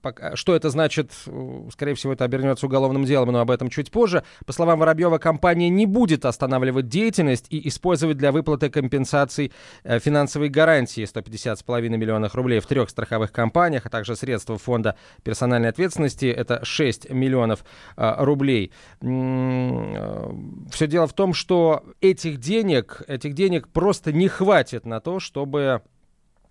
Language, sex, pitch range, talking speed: Russian, male, 125-165 Hz, 135 wpm